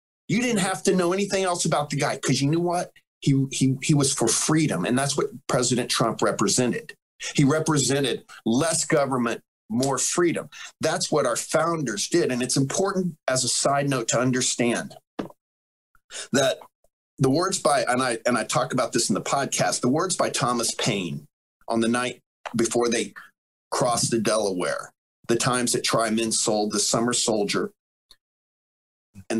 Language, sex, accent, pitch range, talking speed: English, male, American, 115-160 Hz, 170 wpm